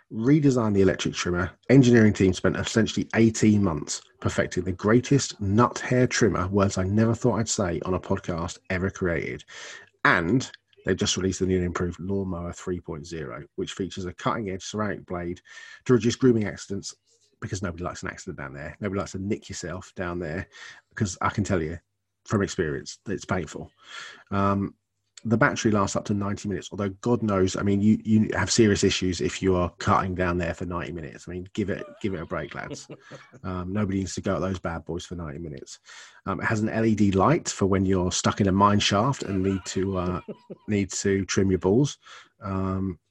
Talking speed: 200 wpm